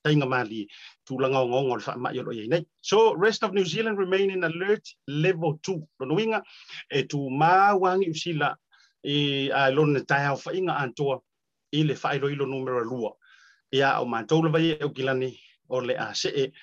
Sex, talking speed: male, 45 wpm